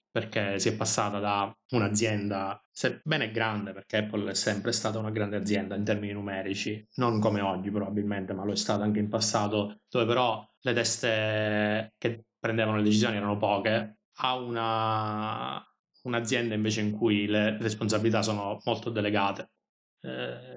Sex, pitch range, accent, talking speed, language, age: male, 105-115 Hz, native, 150 wpm, Italian, 20-39